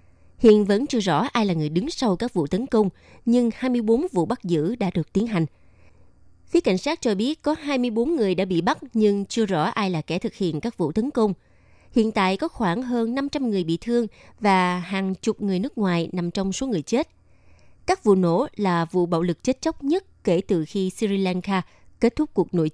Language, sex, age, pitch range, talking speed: Vietnamese, female, 20-39, 175-240 Hz, 220 wpm